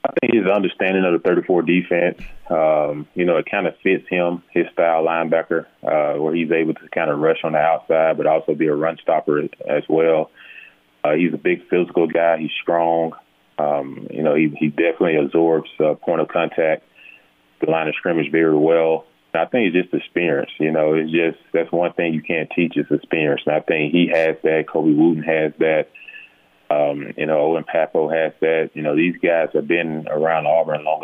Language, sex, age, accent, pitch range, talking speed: English, male, 20-39, American, 75-85 Hz, 205 wpm